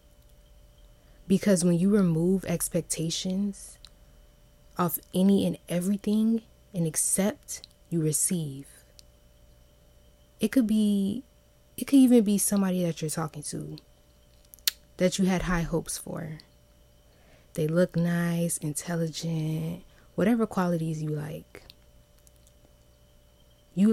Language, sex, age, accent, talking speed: English, female, 20-39, American, 100 wpm